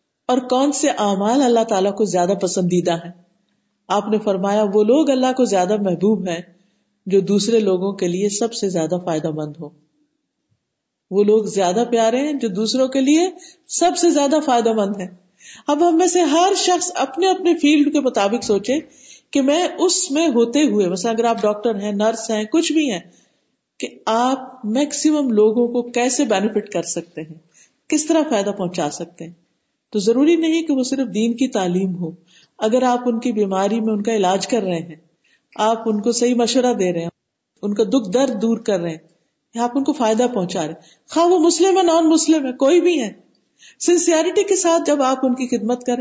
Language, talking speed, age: Urdu, 200 wpm, 50-69